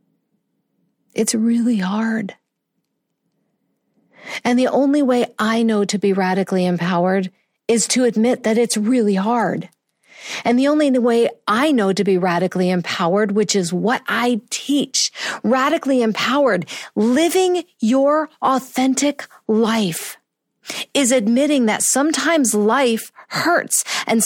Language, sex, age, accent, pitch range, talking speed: English, female, 50-69, American, 205-270 Hz, 120 wpm